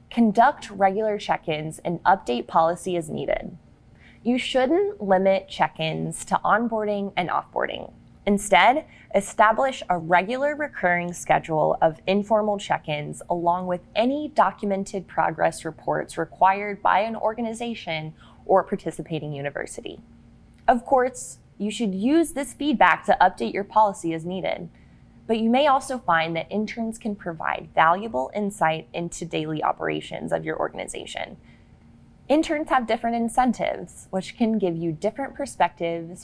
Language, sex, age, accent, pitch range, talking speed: English, female, 20-39, American, 165-225 Hz, 135 wpm